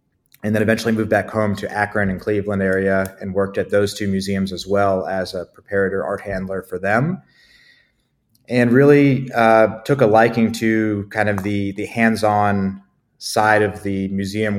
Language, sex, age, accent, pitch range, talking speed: English, male, 30-49, American, 95-110 Hz, 175 wpm